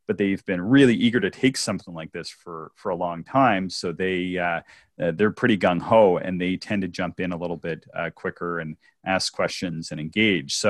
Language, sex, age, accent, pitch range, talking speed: English, male, 30-49, American, 85-105 Hz, 220 wpm